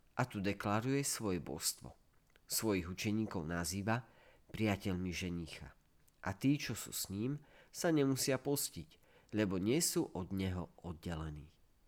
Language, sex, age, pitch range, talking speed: Slovak, male, 40-59, 90-125 Hz, 125 wpm